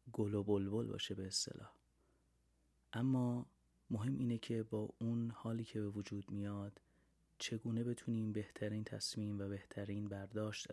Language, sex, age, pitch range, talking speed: Persian, male, 30-49, 85-115 Hz, 135 wpm